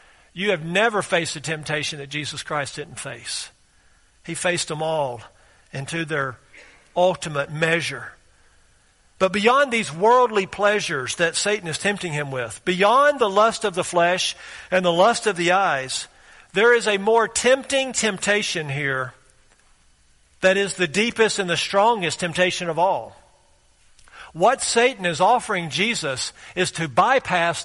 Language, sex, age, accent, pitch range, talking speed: English, male, 50-69, American, 165-220 Hz, 145 wpm